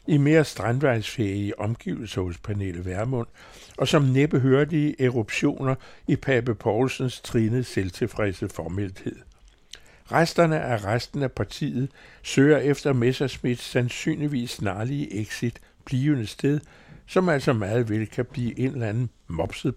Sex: male